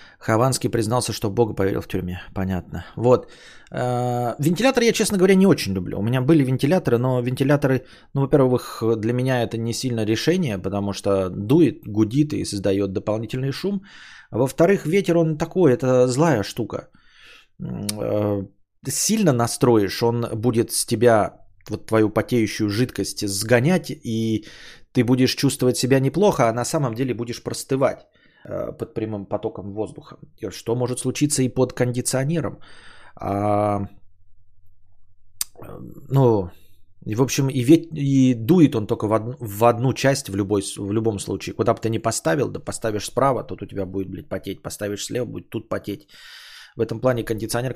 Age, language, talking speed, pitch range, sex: 20-39, Bulgarian, 150 wpm, 105-135 Hz, male